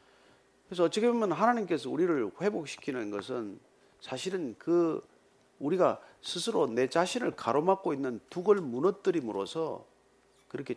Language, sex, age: Korean, male, 40-59